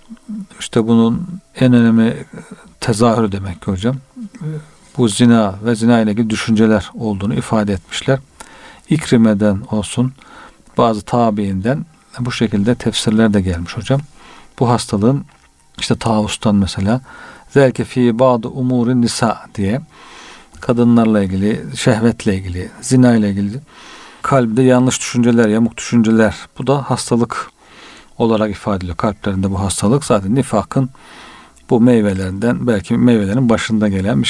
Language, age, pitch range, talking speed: Turkish, 50-69, 105-125 Hz, 120 wpm